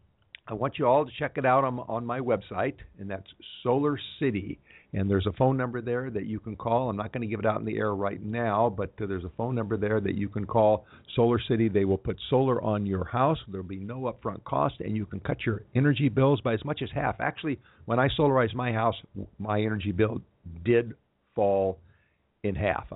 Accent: American